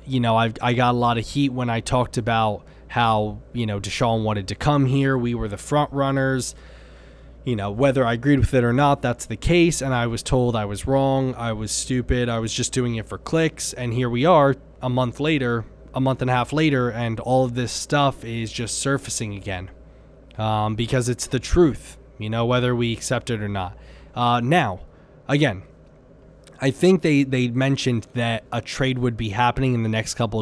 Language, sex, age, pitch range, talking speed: English, male, 20-39, 110-130 Hz, 210 wpm